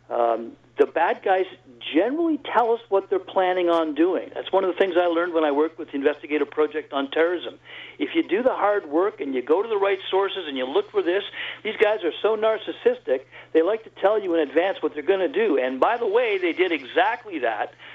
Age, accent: 60-79, American